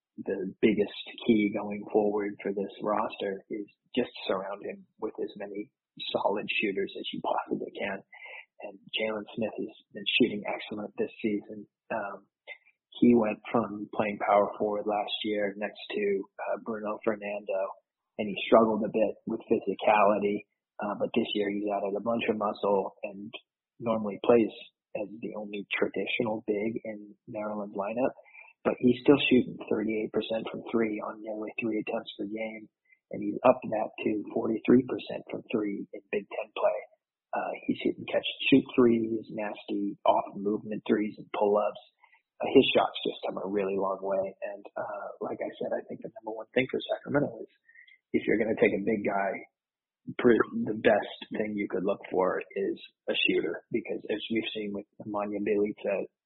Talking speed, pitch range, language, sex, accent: 165 wpm, 105-115 Hz, English, male, American